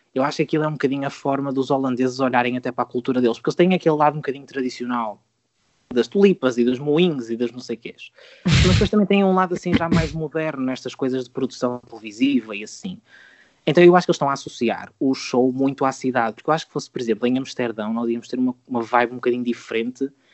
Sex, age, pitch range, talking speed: male, 20-39, 120-155 Hz, 245 wpm